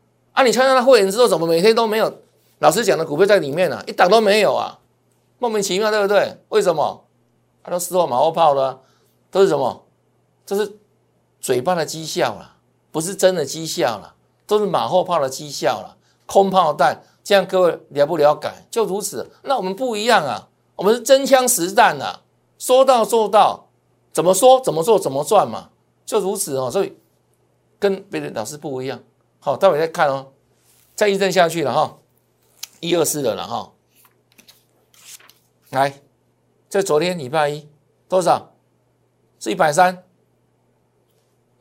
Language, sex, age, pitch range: Chinese, male, 60-79, 145-210 Hz